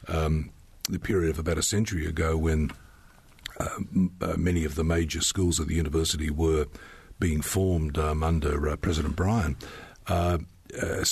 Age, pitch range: 50-69, 80-90 Hz